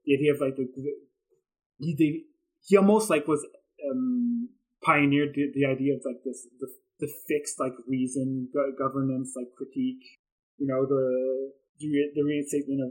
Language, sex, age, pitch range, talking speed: English, male, 20-39, 130-170 Hz, 165 wpm